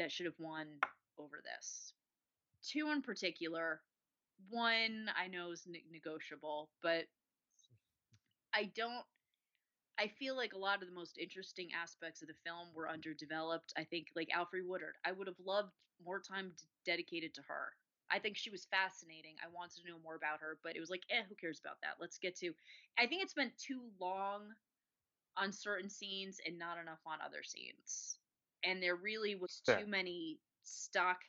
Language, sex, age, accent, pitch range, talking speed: English, female, 20-39, American, 165-225 Hz, 180 wpm